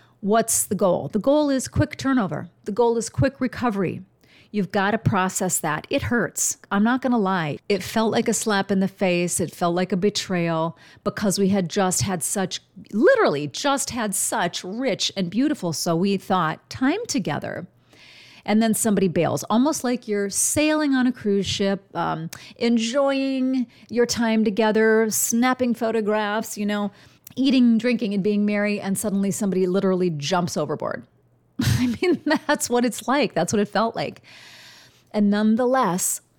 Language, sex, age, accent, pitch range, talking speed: English, female, 40-59, American, 190-250 Hz, 165 wpm